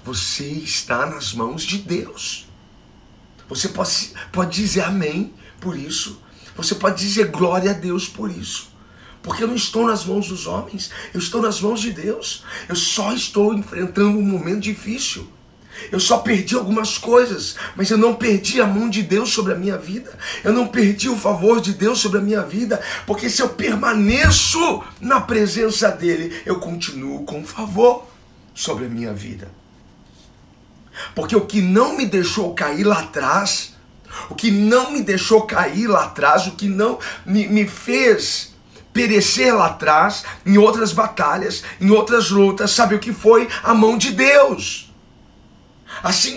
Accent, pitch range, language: Brazilian, 185-225 Hz, Portuguese